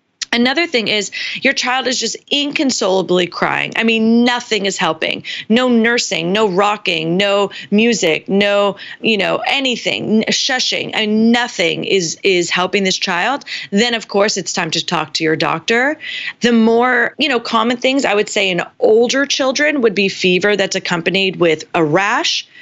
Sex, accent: female, American